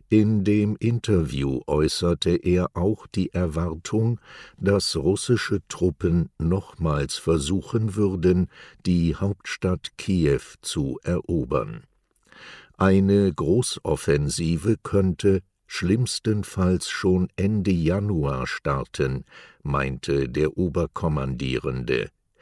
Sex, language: male, German